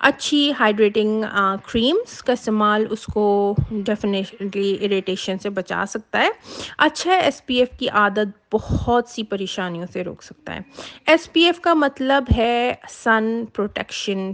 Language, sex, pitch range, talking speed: Urdu, female, 210-270 Hz, 145 wpm